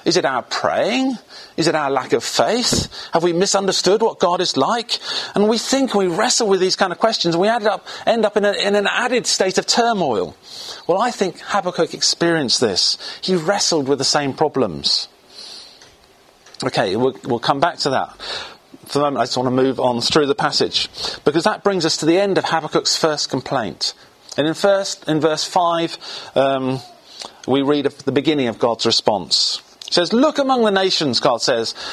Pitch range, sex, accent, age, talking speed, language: 150-210 Hz, male, British, 40-59, 195 wpm, English